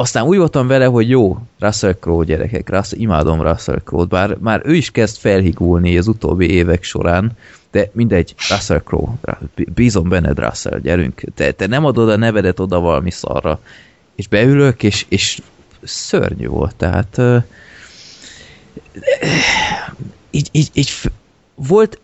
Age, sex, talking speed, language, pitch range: 30-49, male, 140 wpm, Hungarian, 85-115 Hz